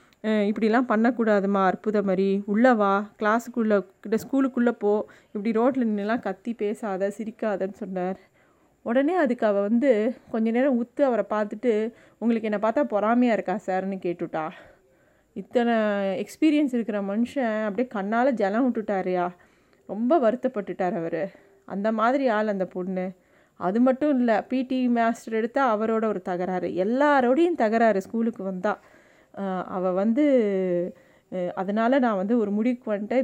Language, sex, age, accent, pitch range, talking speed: Tamil, female, 30-49, native, 195-240 Hz, 125 wpm